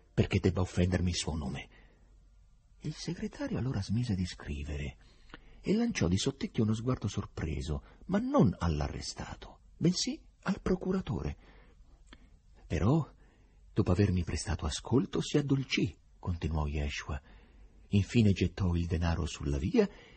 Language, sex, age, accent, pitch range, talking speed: Italian, male, 50-69, native, 80-120 Hz, 120 wpm